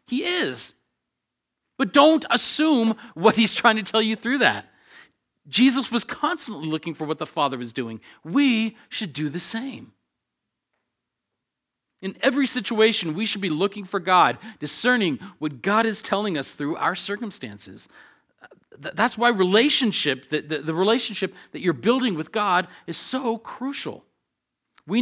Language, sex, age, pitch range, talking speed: English, male, 40-59, 155-225 Hz, 145 wpm